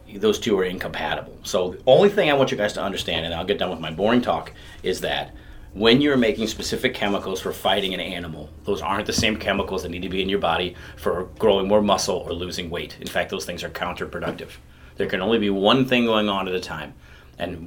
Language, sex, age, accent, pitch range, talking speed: English, male, 30-49, American, 85-110 Hz, 240 wpm